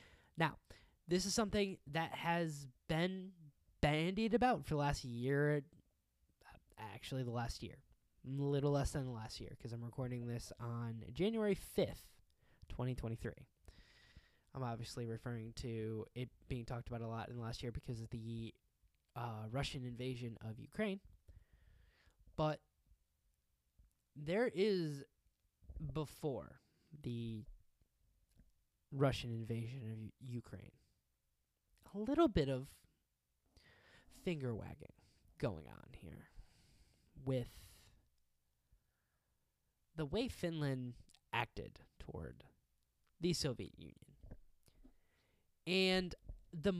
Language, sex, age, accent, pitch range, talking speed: English, male, 10-29, American, 100-145 Hz, 110 wpm